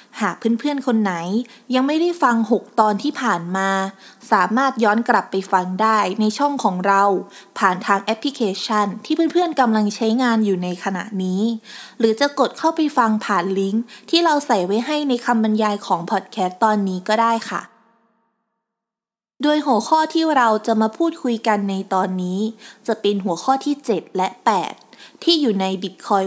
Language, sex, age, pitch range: Thai, female, 20-39, 200-245 Hz